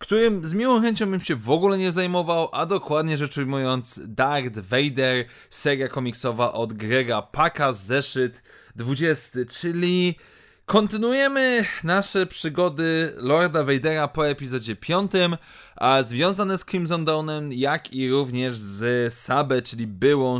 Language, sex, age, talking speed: Polish, male, 20-39, 130 wpm